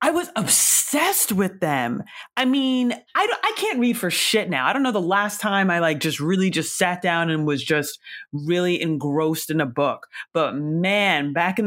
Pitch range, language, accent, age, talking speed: 170-265 Hz, English, American, 30-49, 200 wpm